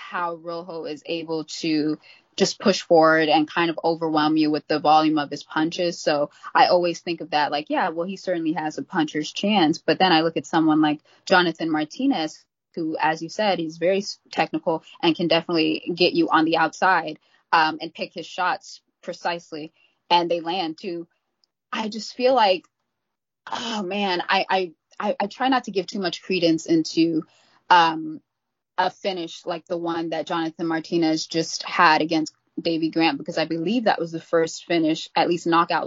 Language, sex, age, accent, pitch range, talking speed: English, female, 20-39, American, 160-180 Hz, 185 wpm